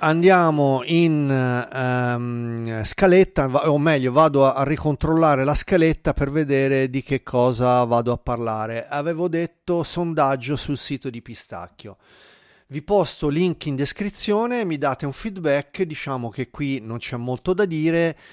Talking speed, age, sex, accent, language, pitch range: 140 wpm, 30-49, male, native, Italian, 125-160 Hz